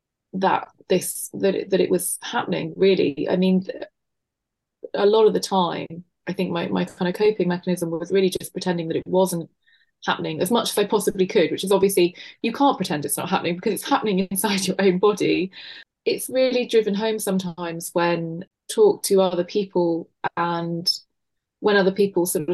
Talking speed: 180 wpm